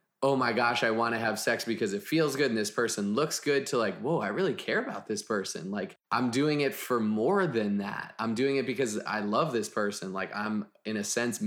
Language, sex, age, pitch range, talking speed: English, male, 20-39, 105-125 Hz, 245 wpm